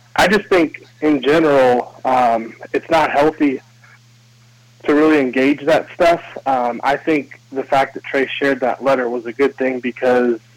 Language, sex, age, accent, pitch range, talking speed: English, male, 20-39, American, 120-135 Hz, 165 wpm